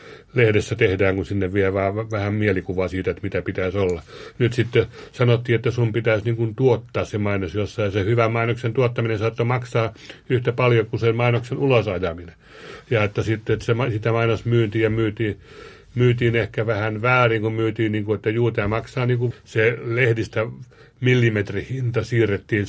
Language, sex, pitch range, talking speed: Finnish, male, 100-115 Hz, 160 wpm